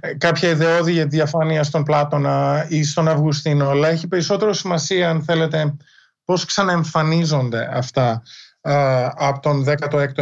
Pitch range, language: 150-185 Hz, Greek